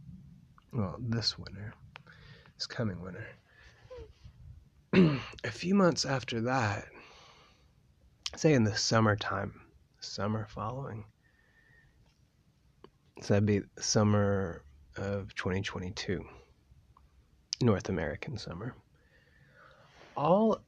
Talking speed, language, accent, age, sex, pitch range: 80 wpm, English, American, 30-49, male, 95-115 Hz